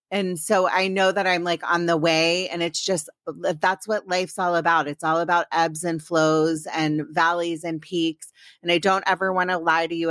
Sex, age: female, 30-49